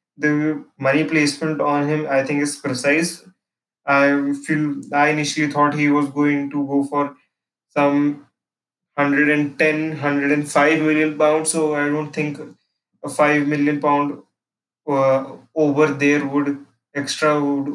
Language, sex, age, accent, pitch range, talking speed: English, male, 20-39, Indian, 145-155 Hz, 130 wpm